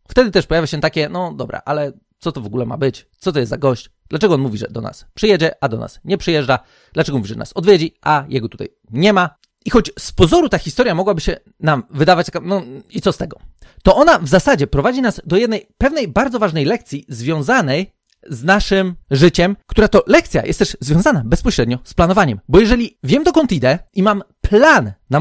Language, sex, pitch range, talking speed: Polish, male, 140-205 Hz, 215 wpm